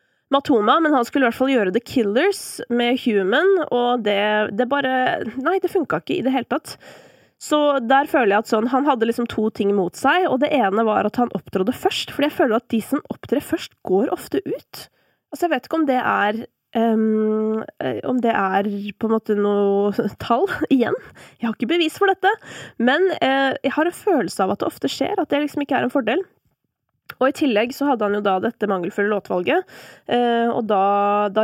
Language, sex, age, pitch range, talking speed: English, female, 20-39, 205-285 Hz, 215 wpm